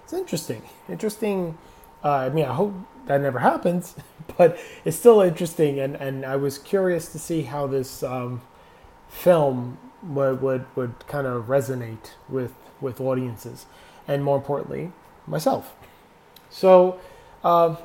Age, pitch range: 20-39, 130-160 Hz